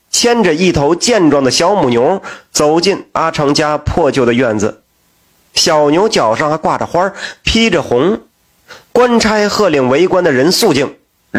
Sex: male